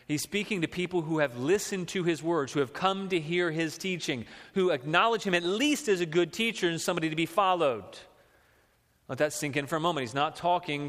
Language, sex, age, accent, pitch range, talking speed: English, male, 30-49, American, 135-170 Hz, 225 wpm